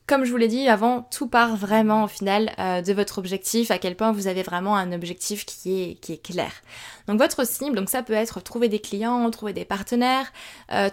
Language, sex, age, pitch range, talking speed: French, female, 20-39, 200-235 Hz, 230 wpm